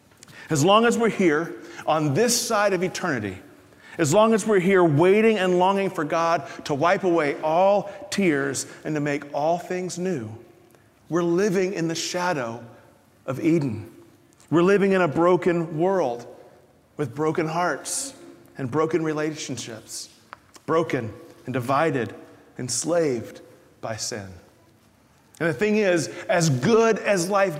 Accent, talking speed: American, 140 wpm